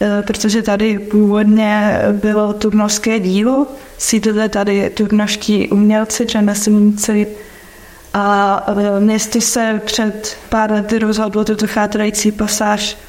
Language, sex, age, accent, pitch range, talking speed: Czech, female, 20-39, native, 200-215 Hz, 95 wpm